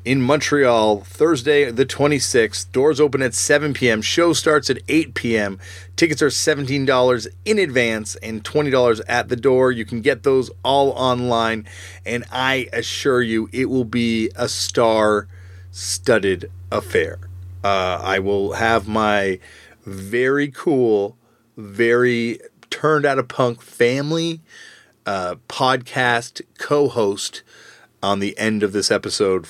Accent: American